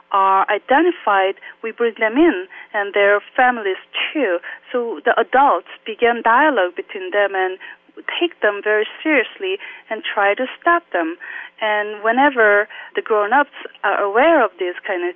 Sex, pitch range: female, 195-320 Hz